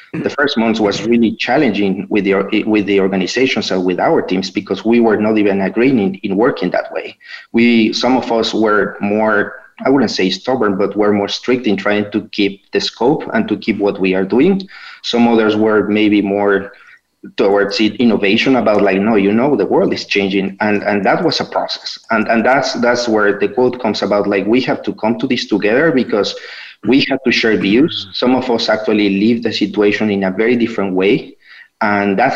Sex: male